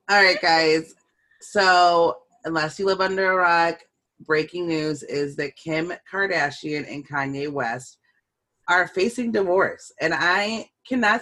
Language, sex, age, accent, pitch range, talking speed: English, female, 30-49, American, 140-175 Hz, 135 wpm